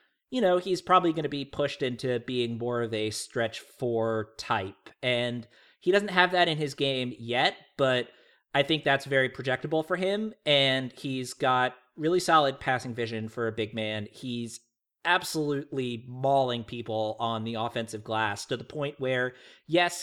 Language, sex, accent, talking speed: English, male, American, 170 wpm